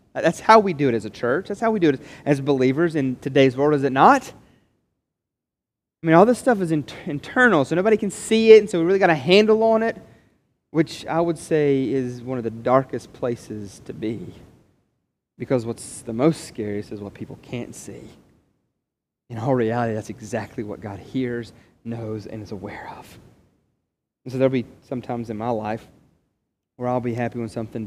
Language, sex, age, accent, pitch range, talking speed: English, male, 30-49, American, 115-165 Hz, 200 wpm